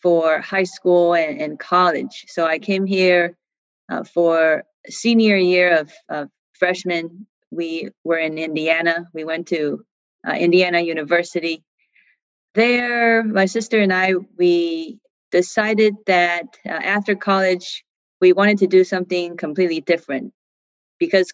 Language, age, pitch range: English, 30-49, 165-195 Hz